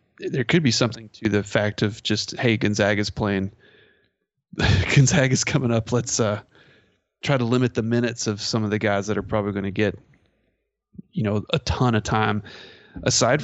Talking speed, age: 190 wpm, 20-39